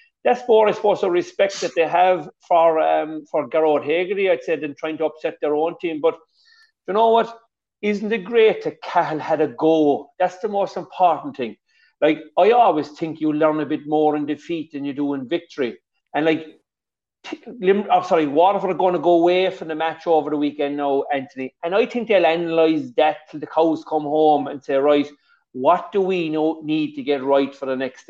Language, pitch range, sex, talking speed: English, 145-190 Hz, male, 220 wpm